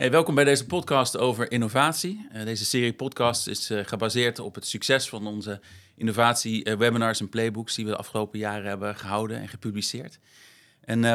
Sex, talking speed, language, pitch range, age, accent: male, 160 wpm, English, 105-130 Hz, 40-59, Dutch